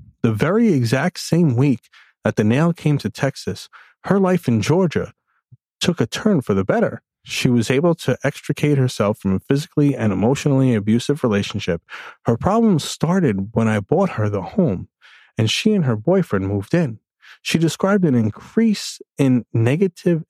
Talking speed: 165 wpm